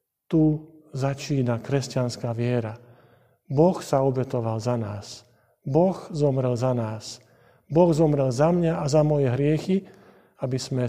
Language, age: Slovak, 50-69